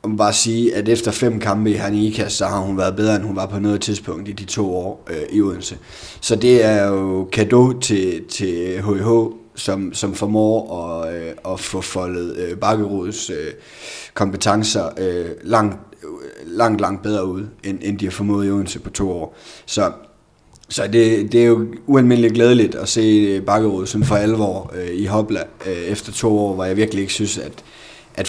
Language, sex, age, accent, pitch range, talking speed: Danish, male, 30-49, native, 95-115 Hz, 200 wpm